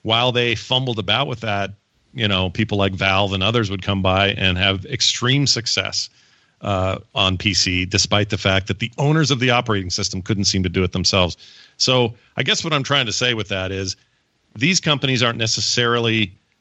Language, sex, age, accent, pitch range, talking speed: English, male, 40-59, American, 100-135 Hz, 195 wpm